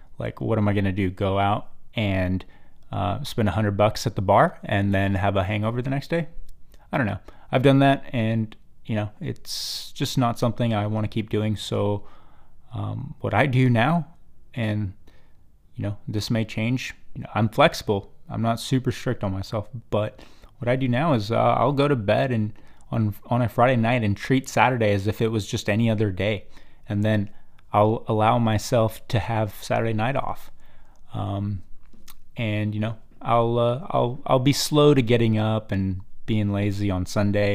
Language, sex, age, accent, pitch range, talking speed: English, male, 20-39, American, 100-130 Hz, 190 wpm